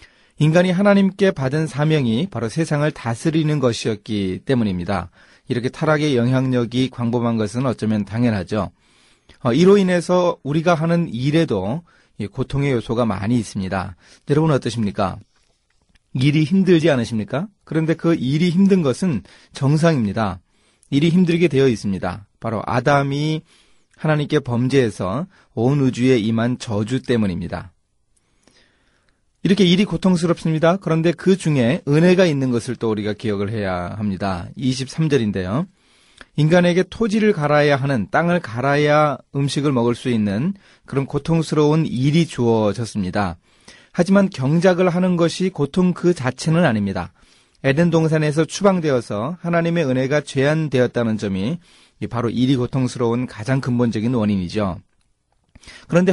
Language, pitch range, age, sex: Korean, 115-165 Hz, 30-49, male